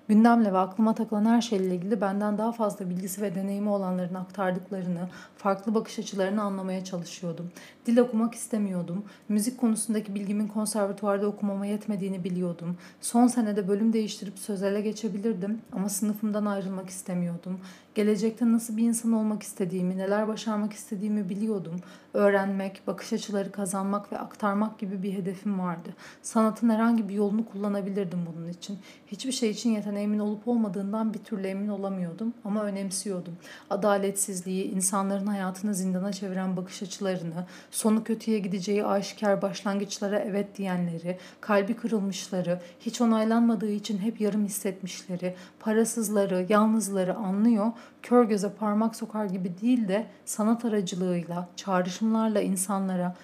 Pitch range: 190-220 Hz